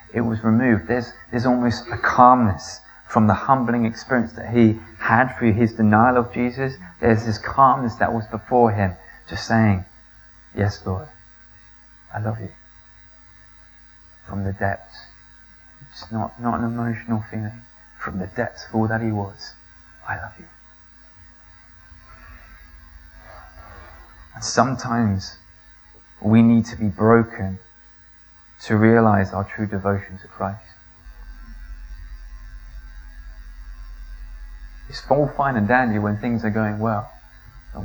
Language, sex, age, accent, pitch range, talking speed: English, male, 30-49, British, 95-115 Hz, 125 wpm